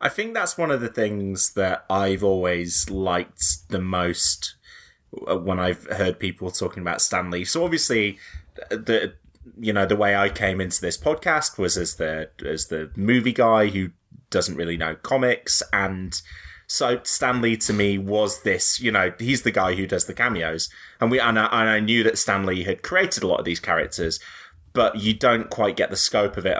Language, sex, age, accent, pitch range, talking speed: English, male, 20-39, British, 90-130 Hz, 190 wpm